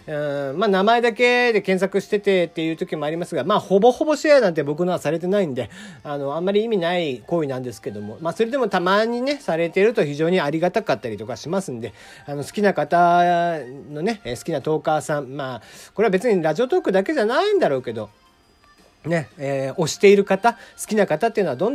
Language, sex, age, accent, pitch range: Japanese, male, 40-59, native, 155-220 Hz